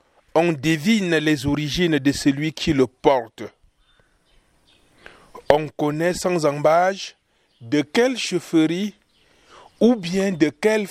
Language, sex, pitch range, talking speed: French, male, 150-180 Hz, 110 wpm